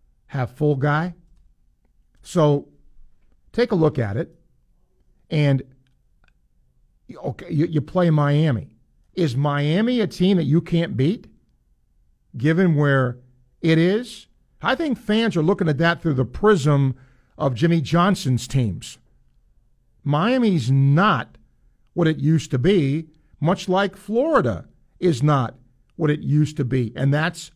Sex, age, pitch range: male, 50-69, 130-185 Hz